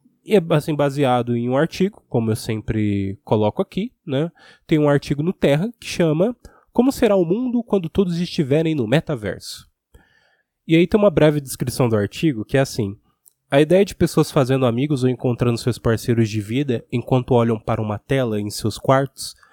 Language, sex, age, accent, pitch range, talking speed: Portuguese, male, 20-39, Brazilian, 120-165 Hz, 180 wpm